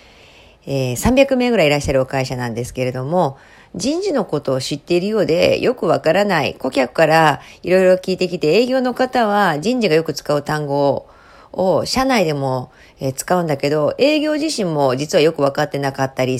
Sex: female